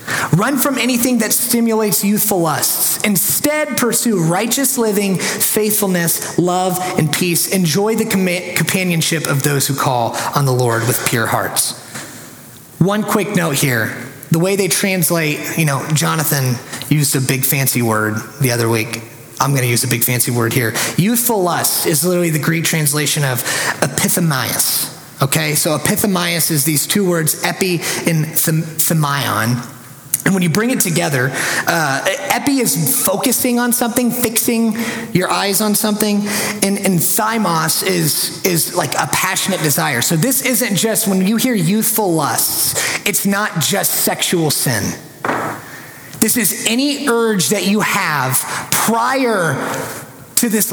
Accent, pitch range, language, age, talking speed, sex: American, 145-210 Hz, English, 30-49, 145 wpm, male